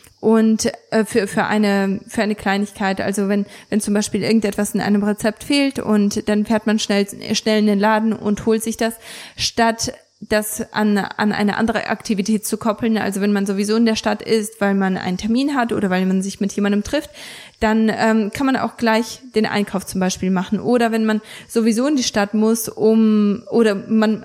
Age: 20-39